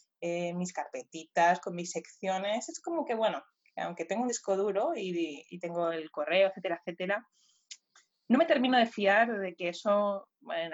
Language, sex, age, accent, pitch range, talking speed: Spanish, female, 20-39, Spanish, 175-205 Hz, 175 wpm